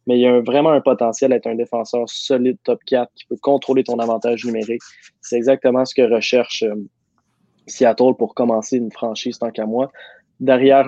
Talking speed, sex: 195 wpm, male